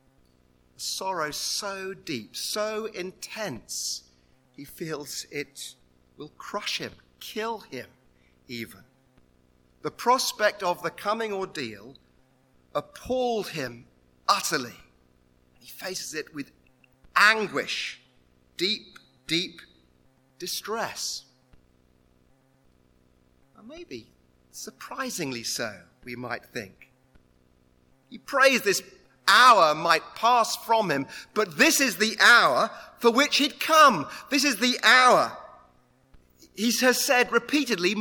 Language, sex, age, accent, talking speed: English, male, 40-59, British, 100 wpm